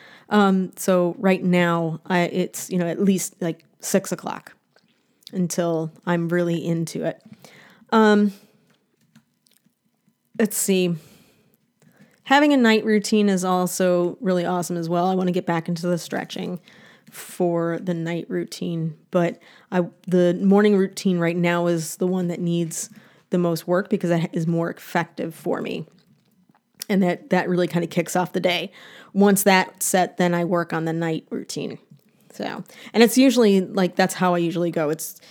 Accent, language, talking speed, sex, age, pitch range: American, English, 165 wpm, female, 20-39, 175-200 Hz